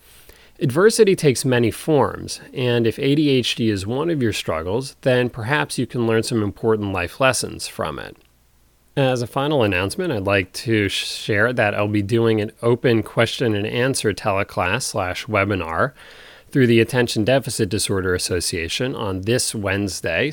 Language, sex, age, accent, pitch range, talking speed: English, male, 30-49, American, 95-120 Hz, 155 wpm